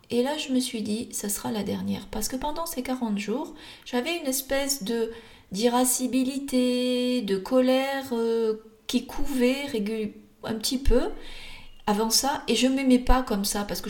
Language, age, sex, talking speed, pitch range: French, 40-59, female, 175 wpm, 215-260 Hz